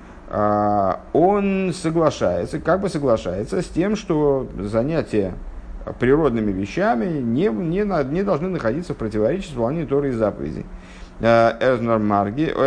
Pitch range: 105-145 Hz